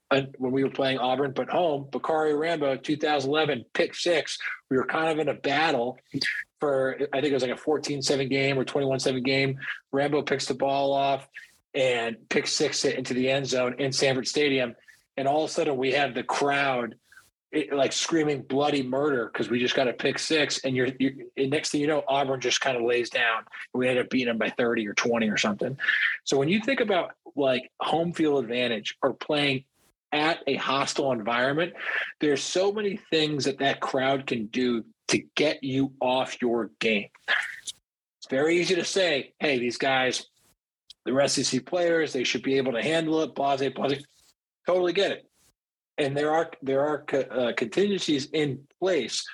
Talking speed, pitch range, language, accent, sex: 195 wpm, 130-150 Hz, English, American, male